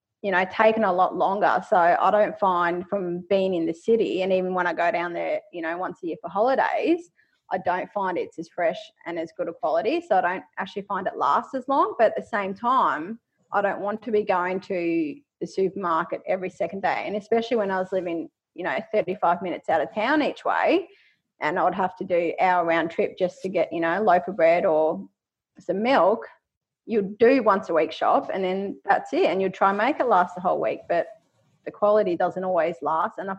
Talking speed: 235 wpm